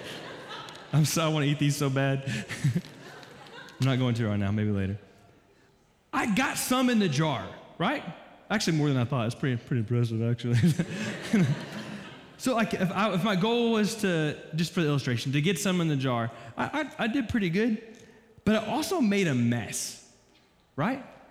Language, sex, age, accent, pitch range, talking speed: English, male, 20-39, American, 135-210 Hz, 185 wpm